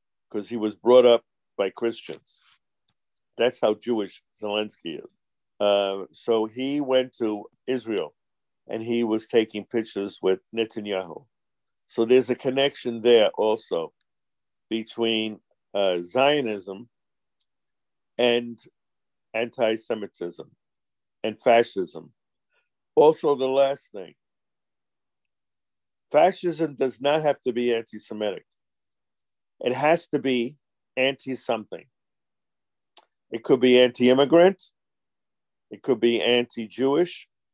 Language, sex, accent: English, male, American